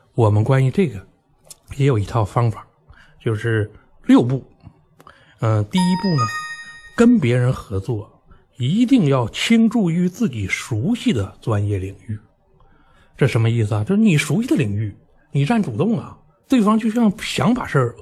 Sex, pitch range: male, 110-165 Hz